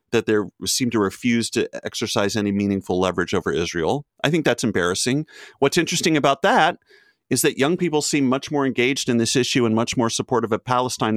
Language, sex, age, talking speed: English, male, 30-49, 200 wpm